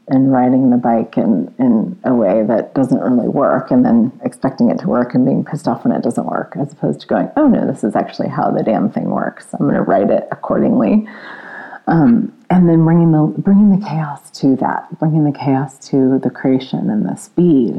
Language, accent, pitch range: English, American, 140-230 Hz